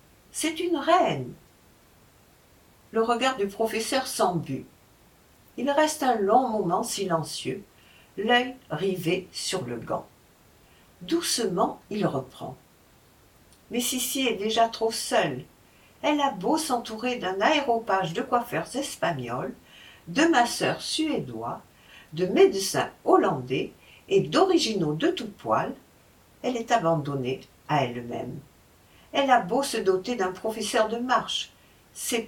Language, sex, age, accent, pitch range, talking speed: French, female, 60-79, French, 180-275 Hz, 115 wpm